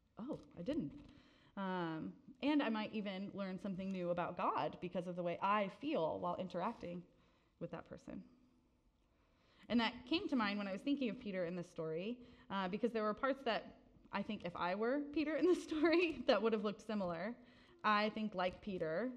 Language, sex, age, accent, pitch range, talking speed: English, female, 20-39, American, 170-225 Hz, 195 wpm